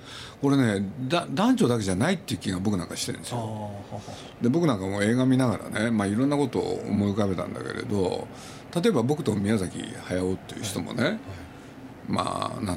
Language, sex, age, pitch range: Japanese, male, 50-69, 105-135 Hz